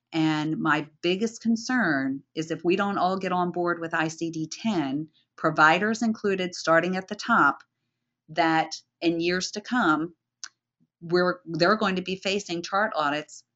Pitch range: 155-190 Hz